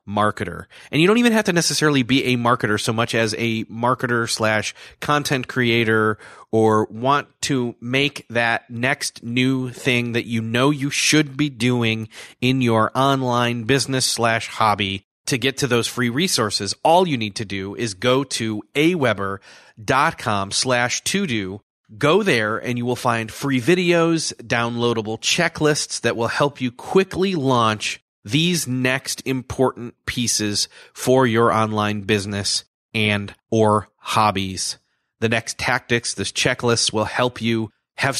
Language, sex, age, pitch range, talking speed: English, male, 30-49, 110-130 Hz, 150 wpm